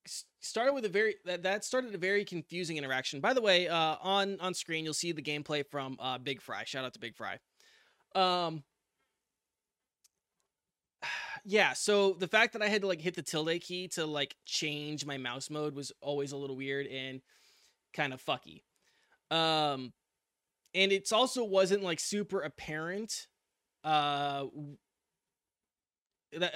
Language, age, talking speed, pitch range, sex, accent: English, 20-39, 155 wpm, 145-190 Hz, male, American